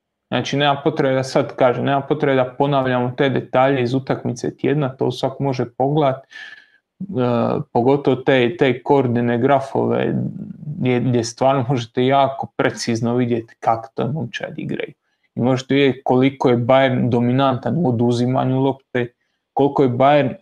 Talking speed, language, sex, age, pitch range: 145 wpm, Croatian, male, 30-49, 130-165 Hz